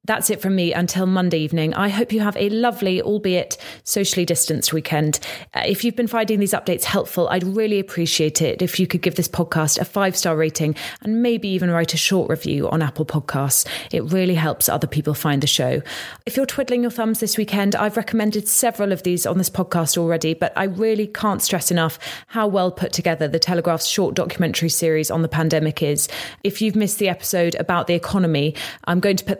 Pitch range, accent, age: 160-200 Hz, British, 20-39